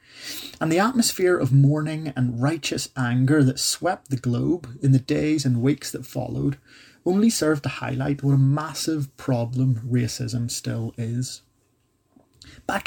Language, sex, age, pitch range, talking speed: English, male, 30-49, 130-155 Hz, 145 wpm